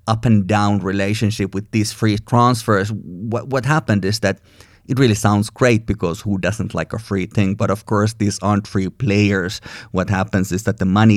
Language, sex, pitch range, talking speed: English, male, 100-115 Hz, 200 wpm